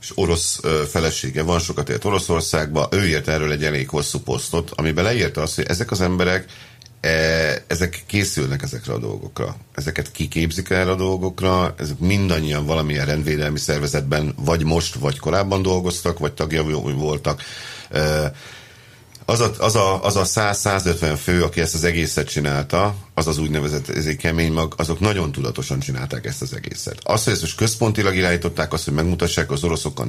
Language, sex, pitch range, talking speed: Hungarian, male, 75-95 Hz, 170 wpm